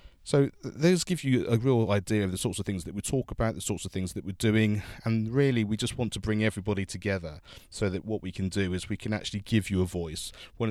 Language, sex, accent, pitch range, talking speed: English, male, British, 90-105 Hz, 265 wpm